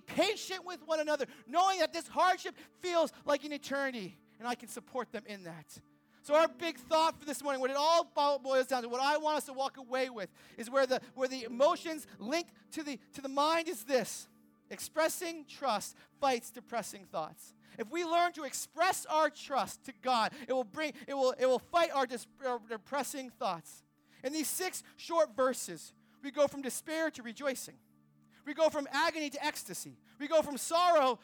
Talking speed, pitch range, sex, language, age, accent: 195 wpm, 240-325 Hz, male, English, 40-59, American